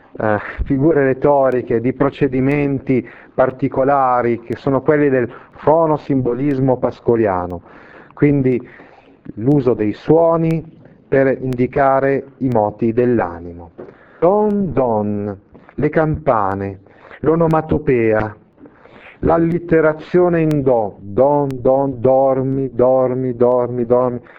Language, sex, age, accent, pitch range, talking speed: Italian, male, 40-59, native, 115-145 Hz, 85 wpm